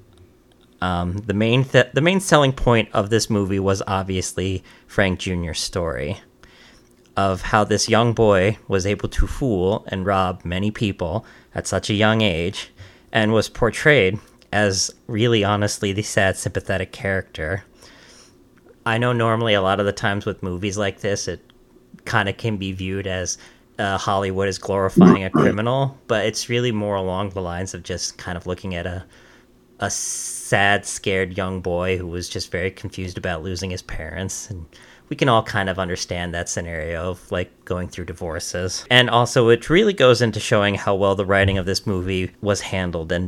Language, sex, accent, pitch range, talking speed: English, male, American, 90-110 Hz, 175 wpm